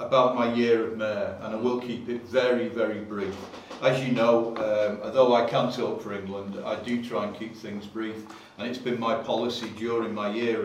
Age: 40-59